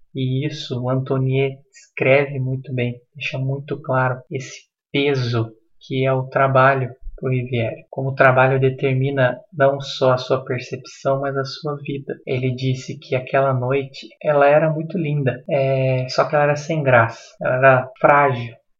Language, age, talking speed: Portuguese, 20-39, 160 wpm